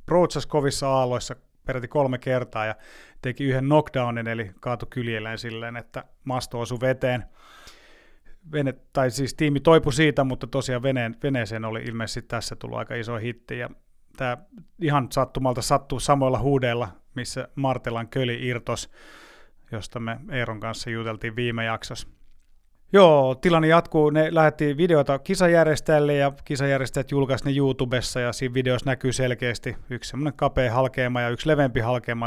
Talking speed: 145 wpm